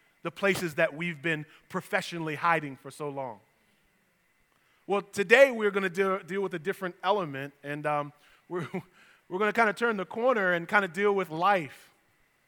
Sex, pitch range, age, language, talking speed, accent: male, 155-205 Hz, 20-39, English, 160 wpm, American